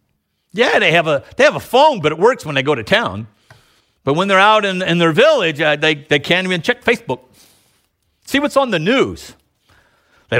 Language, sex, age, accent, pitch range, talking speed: English, male, 50-69, American, 115-185 Hz, 215 wpm